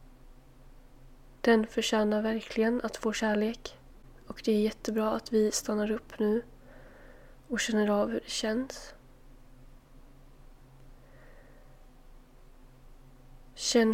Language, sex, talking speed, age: Swedish, female, 95 wpm, 20-39